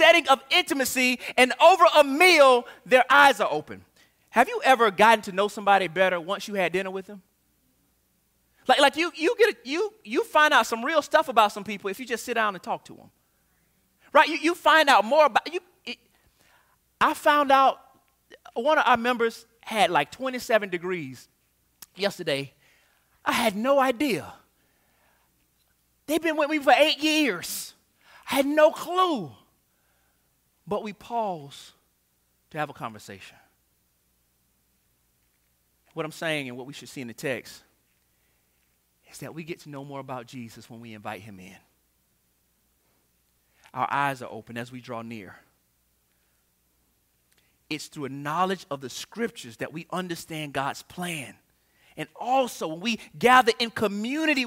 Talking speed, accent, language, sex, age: 160 wpm, American, English, male, 30-49